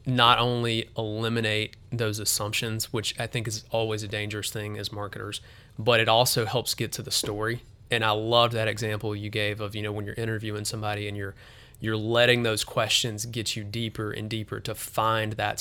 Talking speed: 195 wpm